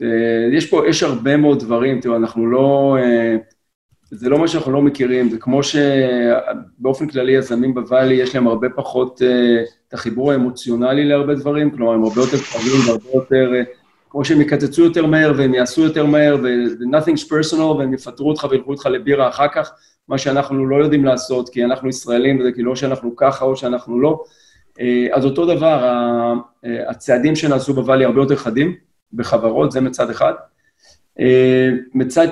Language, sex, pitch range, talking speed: Hebrew, male, 120-145 Hz, 175 wpm